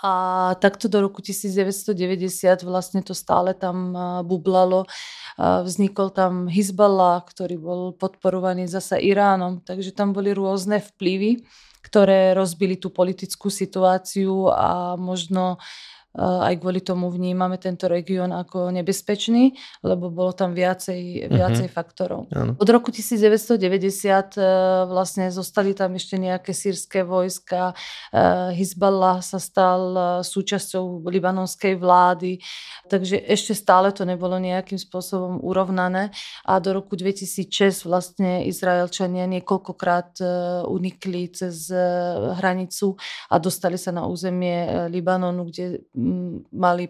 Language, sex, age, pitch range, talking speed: Slovak, female, 20-39, 180-195 Hz, 110 wpm